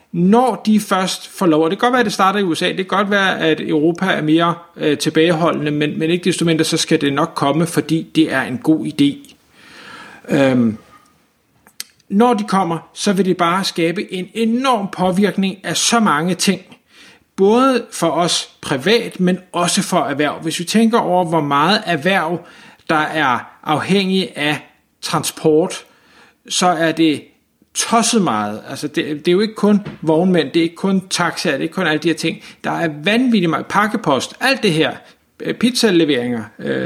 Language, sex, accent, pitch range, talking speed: Danish, male, native, 155-195 Hz, 180 wpm